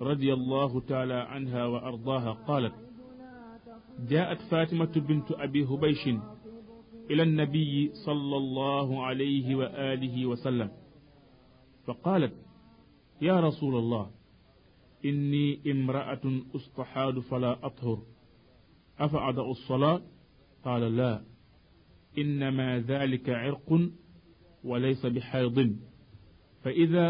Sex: male